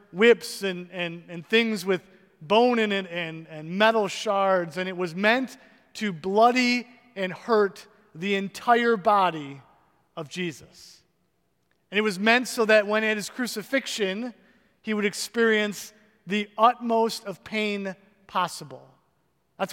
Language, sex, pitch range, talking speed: English, male, 180-225 Hz, 135 wpm